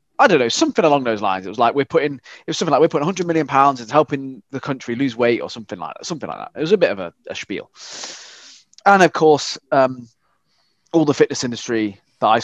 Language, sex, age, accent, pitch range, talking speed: English, male, 20-39, British, 120-160 Hz, 255 wpm